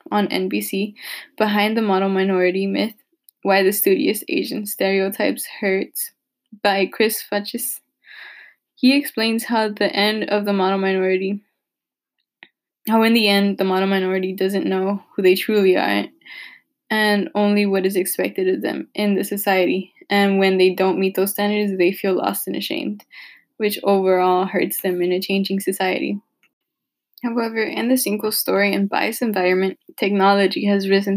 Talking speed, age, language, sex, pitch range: 150 wpm, 10-29, English, female, 190-225 Hz